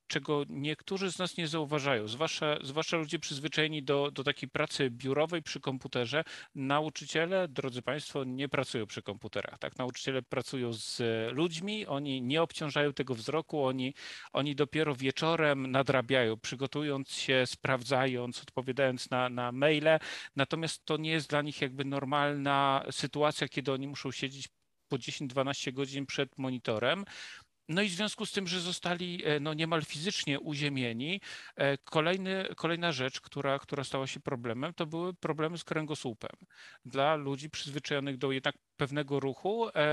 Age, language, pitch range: 40-59, Polish, 135-155 Hz